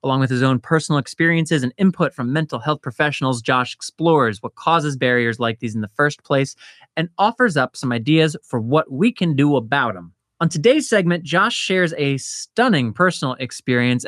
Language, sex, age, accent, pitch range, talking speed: English, male, 20-39, American, 125-170 Hz, 190 wpm